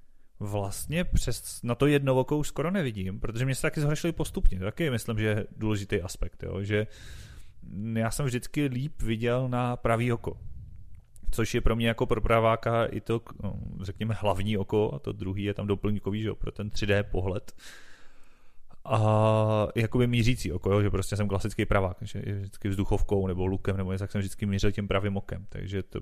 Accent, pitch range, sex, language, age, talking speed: native, 100-125 Hz, male, Czech, 30-49, 185 wpm